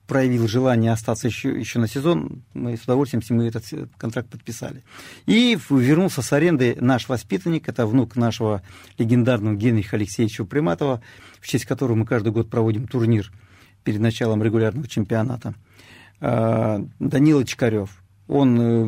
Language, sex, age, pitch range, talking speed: Russian, male, 40-59, 115-130 Hz, 135 wpm